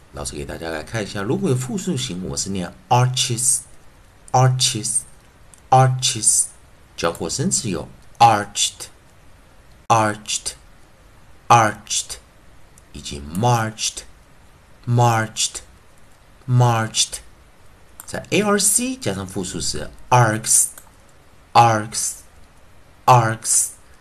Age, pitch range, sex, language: 50-69, 95-130 Hz, male, Chinese